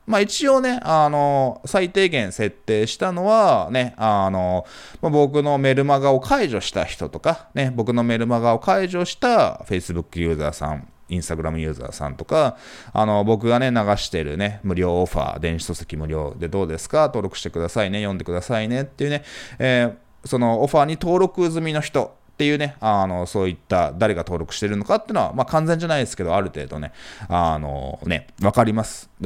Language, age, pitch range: Japanese, 20-39, 90-140 Hz